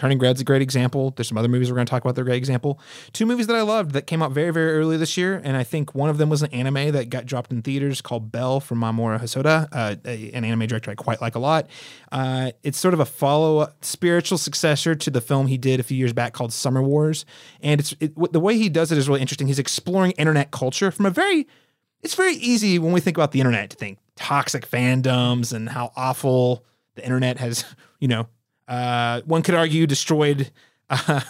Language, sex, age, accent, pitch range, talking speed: English, male, 30-49, American, 125-155 Hz, 245 wpm